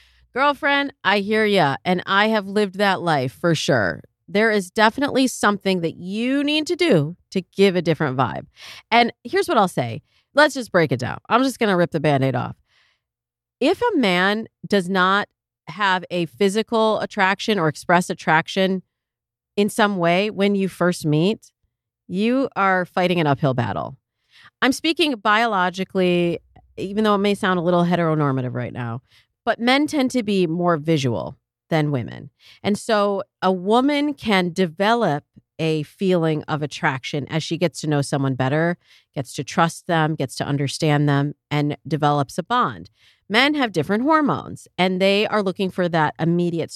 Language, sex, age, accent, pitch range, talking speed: English, female, 40-59, American, 150-210 Hz, 170 wpm